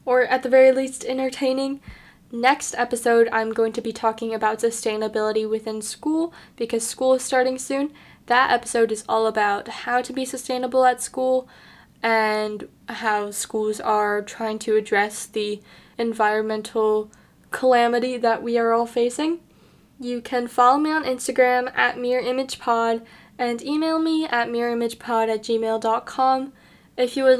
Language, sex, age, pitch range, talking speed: English, female, 10-29, 225-255 Hz, 145 wpm